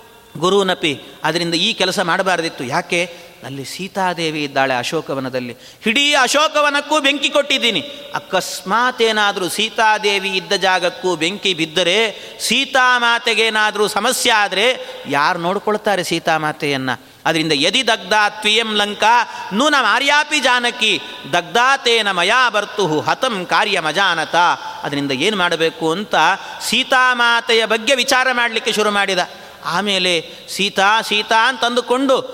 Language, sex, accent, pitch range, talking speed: Kannada, male, native, 180-240 Hz, 100 wpm